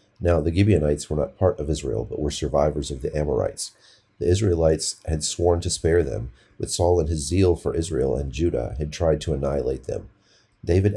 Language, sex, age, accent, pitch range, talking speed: English, male, 40-59, American, 75-95 Hz, 195 wpm